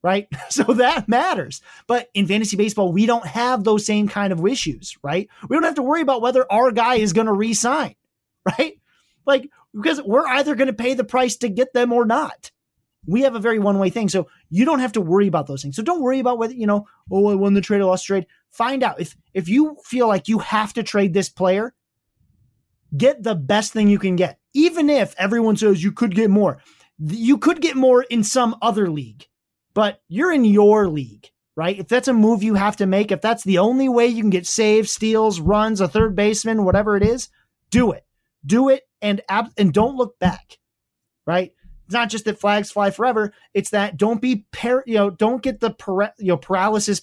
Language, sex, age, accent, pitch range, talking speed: English, male, 30-49, American, 190-235 Hz, 225 wpm